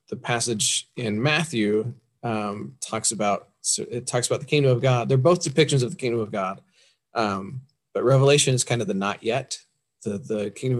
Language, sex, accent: English, male, American